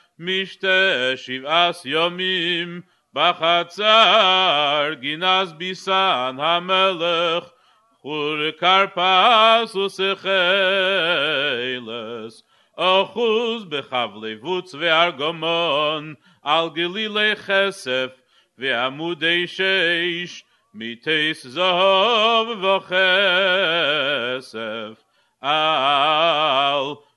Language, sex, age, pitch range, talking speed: English, male, 50-69, 155-190 Hz, 50 wpm